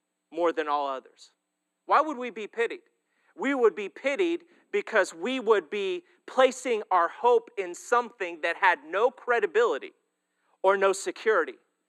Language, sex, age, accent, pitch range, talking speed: English, male, 30-49, American, 245-330 Hz, 145 wpm